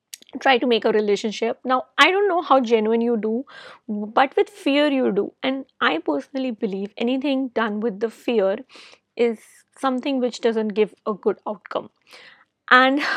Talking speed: 165 wpm